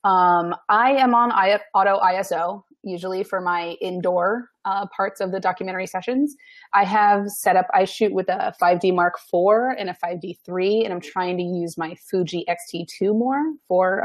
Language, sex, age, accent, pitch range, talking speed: English, female, 30-49, American, 175-230 Hz, 175 wpm